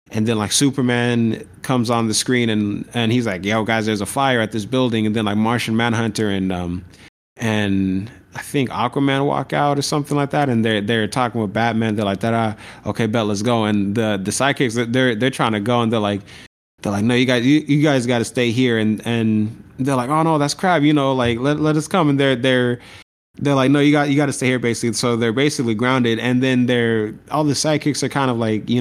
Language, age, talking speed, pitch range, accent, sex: English, 20-39, 245 wpm, 110-135 Hz, American, male